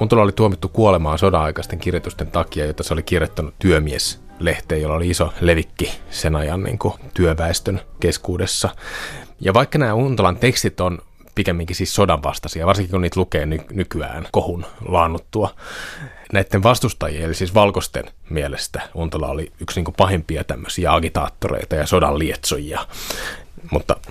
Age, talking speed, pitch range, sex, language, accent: 30-49, 145 wpm, 80-105 Hz, male, Finnish, native